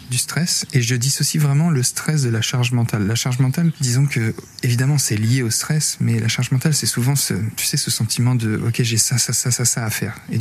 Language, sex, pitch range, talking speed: French, male, 115-140 Hz, 255 wpm